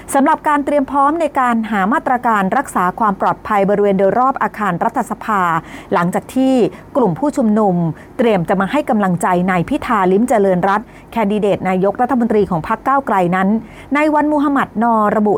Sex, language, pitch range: female, Thai, 190-255 Hz